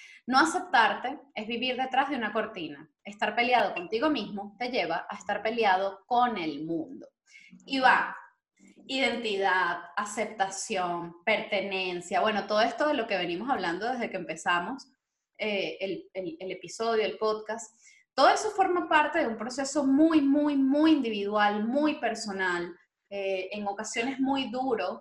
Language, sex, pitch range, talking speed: Spanish, female, 205-300 Hz, 145 wpm